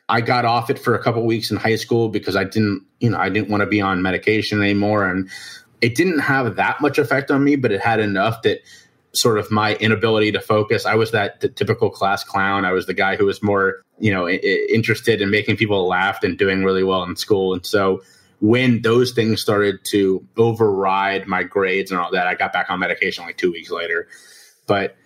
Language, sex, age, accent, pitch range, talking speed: English, male, 30-49, American, 100-115 Hz, 230 wpm